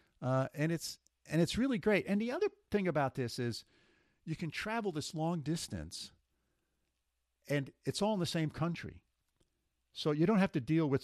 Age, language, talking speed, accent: 50-69, English, 185 wpm, American